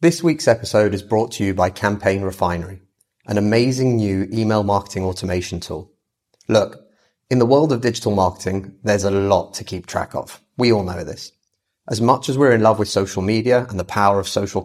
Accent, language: British, English